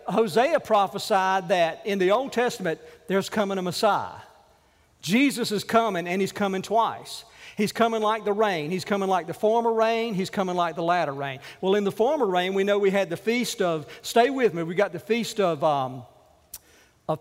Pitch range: 190-235 Hz